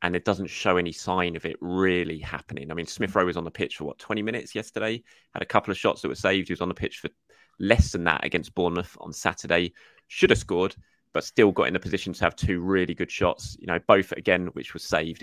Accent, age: British, 20-39